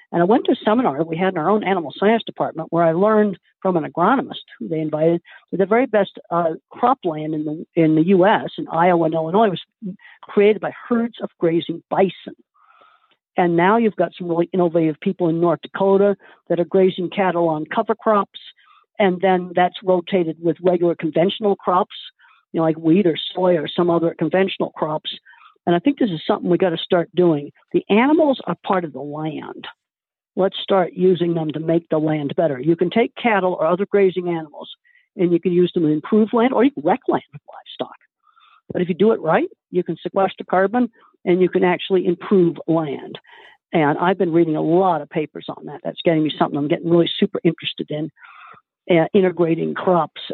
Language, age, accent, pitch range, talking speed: English, 50-69, American, 165-205 Hz, 205 wpm